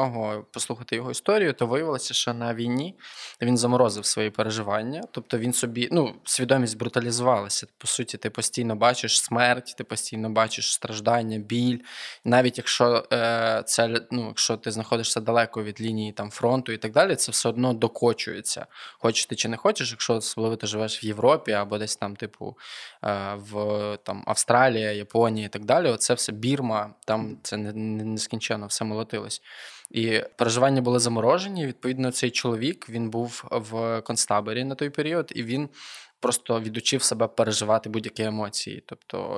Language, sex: Ukrainian, male